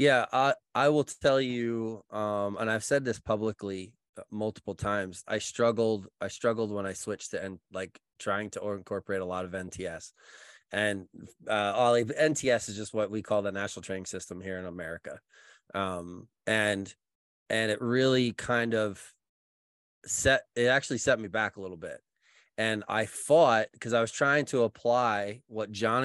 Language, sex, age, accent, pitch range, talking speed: English, male, 20-39, American, 105-130 Hz, 170 wpm